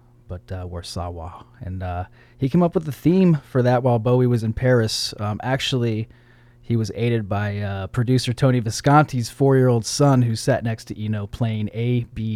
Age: 30-49